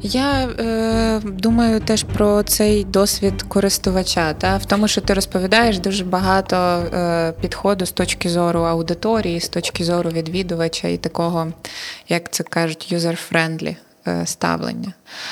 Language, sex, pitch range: Ukrainian, female, 160-185 Hz